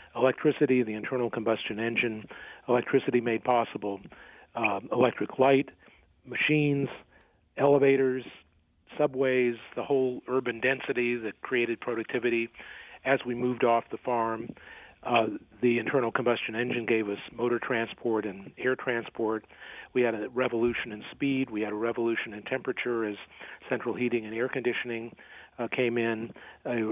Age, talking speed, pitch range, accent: 40-59, 135 wpm, 115-130 Hz, American